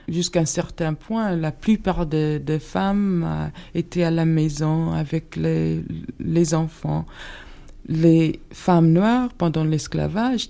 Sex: female